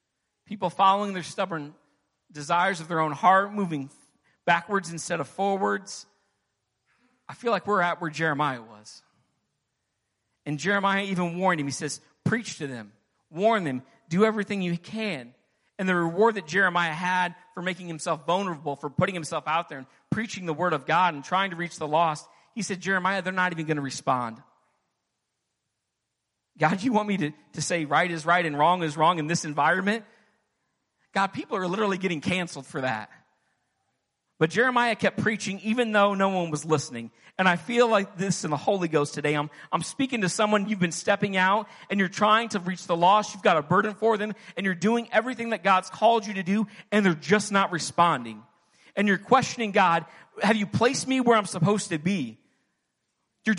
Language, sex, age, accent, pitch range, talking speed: English, male, 40-59, American, 160-210 Hz, 190 wpm